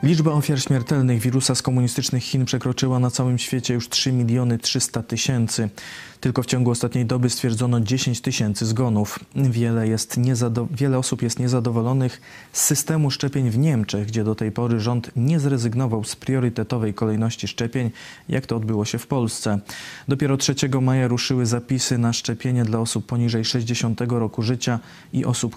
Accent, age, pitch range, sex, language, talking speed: native, 20-39, 115-130 Hz, male, Polish, 160 wpm